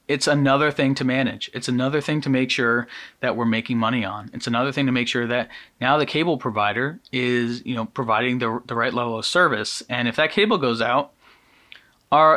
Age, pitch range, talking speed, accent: 30-49, 115-150 Hz, 215 wpm, American